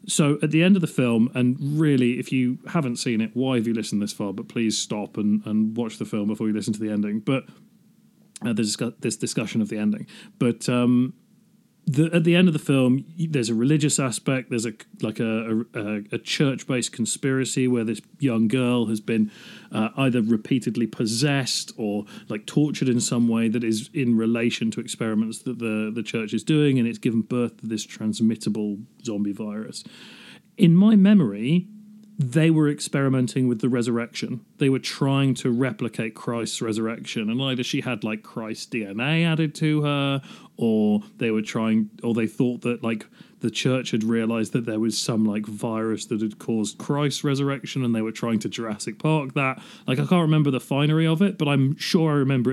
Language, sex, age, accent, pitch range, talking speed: English, male, 30-49, British, 115-150 Hz, 195 wpm